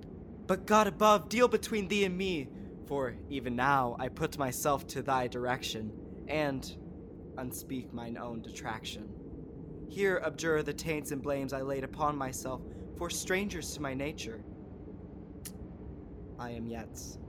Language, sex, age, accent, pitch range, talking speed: English, male, 20-39, American, 110-180 Hz, 140 wpm